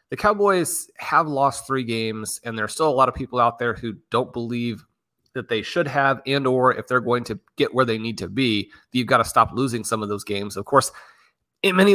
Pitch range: 110-140 Hz